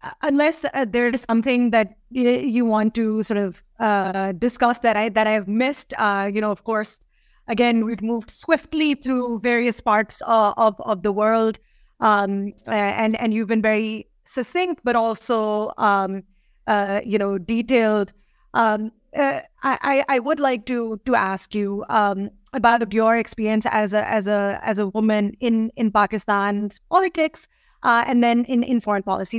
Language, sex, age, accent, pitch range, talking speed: English, female, 30-49, Indian, 210-245 Hz, 165 wpm